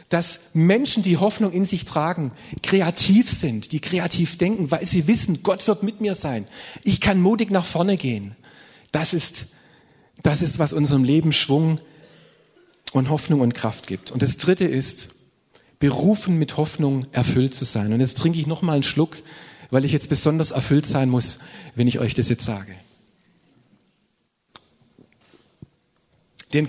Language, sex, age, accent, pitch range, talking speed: German, male, 40-59, German, 120-160 Hz, 155 wpm